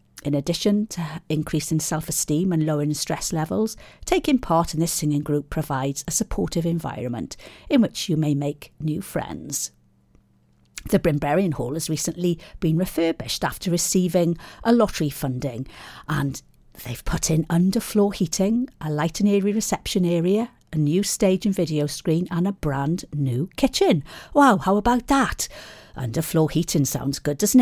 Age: 50-69